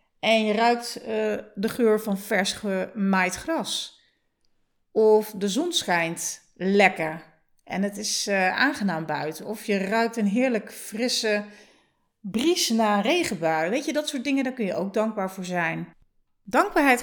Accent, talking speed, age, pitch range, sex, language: Dutch, 150 wpm, 40-59, 185-245 Hz, female, Dutch